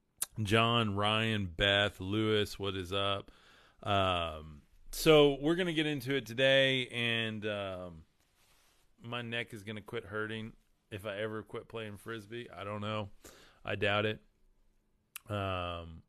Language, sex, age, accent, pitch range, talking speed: English, male, 30-49, American, 90-115 Hz, 135 wpm